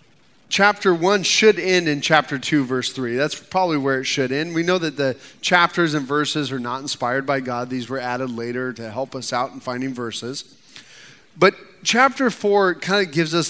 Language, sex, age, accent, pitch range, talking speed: English, male, 30-49, American, 140-195 Hz, 200 wpm